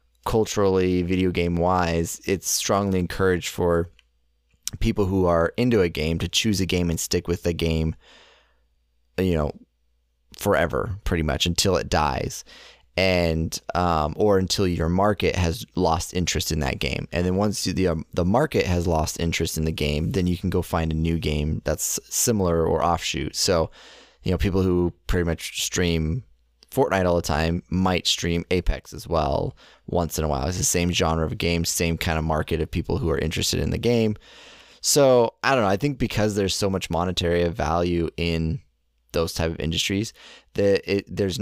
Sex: male